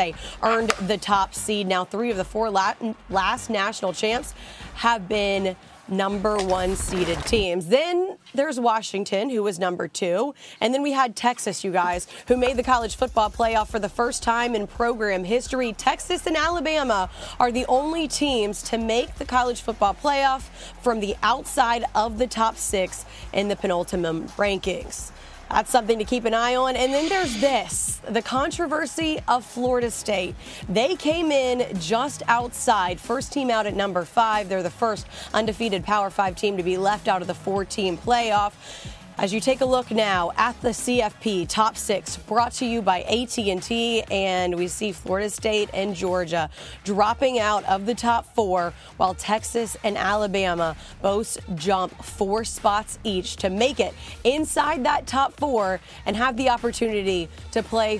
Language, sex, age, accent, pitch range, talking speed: English, female, 30-49, American, 190-240 Hz, 170 wpm